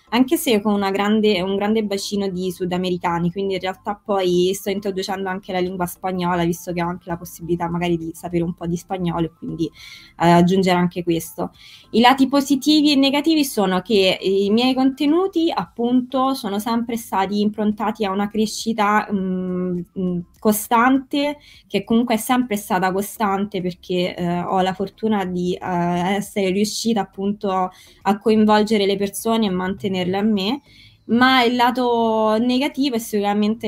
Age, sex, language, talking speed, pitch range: 20-39, female, Italian, 155 wpm, 185-230 Hz